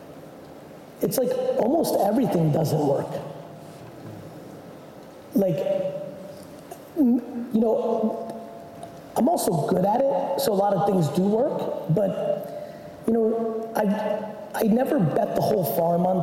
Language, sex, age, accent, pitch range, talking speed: English, male, 30-49, American, 180-225 Hz, 120 wpm